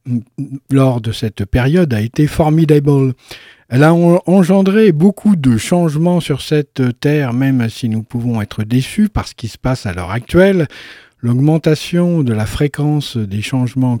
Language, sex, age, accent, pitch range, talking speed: French, male, 50-69, French, 120-165 Hz, 155 wpm